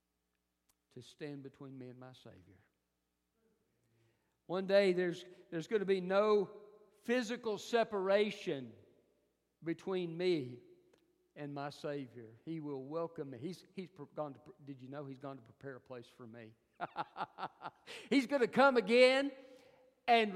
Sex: male